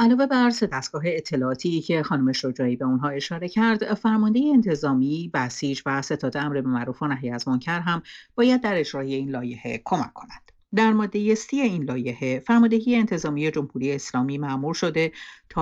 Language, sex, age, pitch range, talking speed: Persian, female, 50-69, 140-205 Hz, 160 wpm